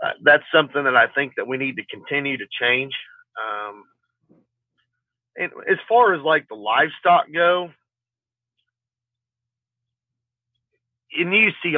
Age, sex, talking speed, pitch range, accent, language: 40-59, male, 125 wpm, 120-165 Hz, American, English